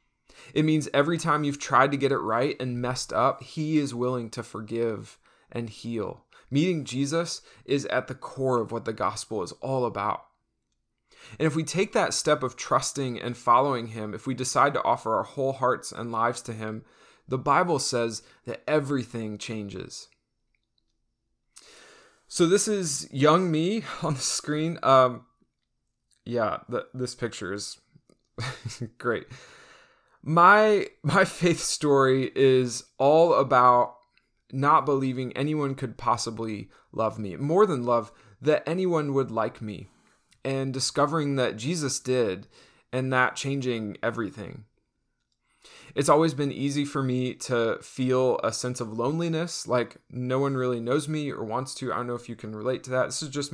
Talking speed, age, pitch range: 160 wpm, 20-39, 120-150 Hz